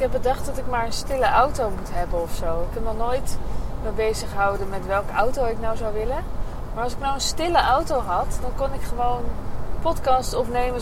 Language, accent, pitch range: Dutch, Dutch, 215-260 Hz